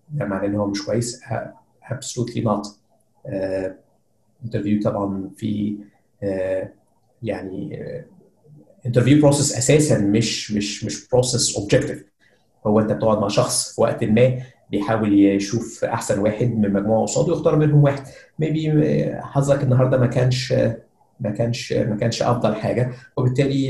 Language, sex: English, male